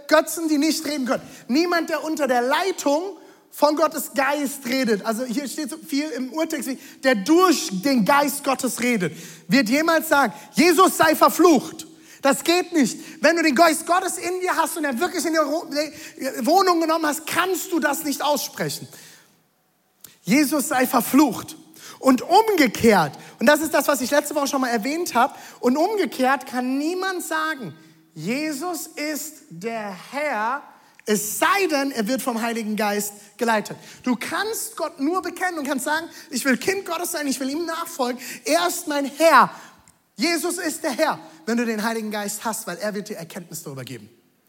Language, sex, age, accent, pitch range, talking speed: German, male, 30-49, German, 240-315 Hz, 175 wpm